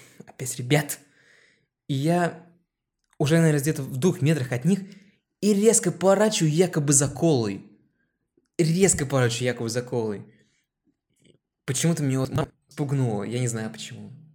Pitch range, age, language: 115-145 Hz, 20-39, Russian